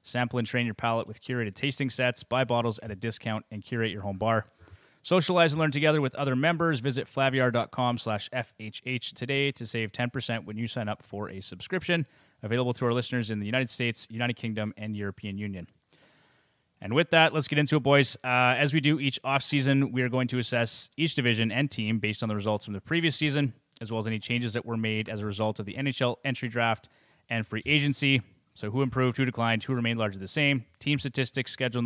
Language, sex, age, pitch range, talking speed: English, male, 20-39, 110-135 Hz, 220 wpm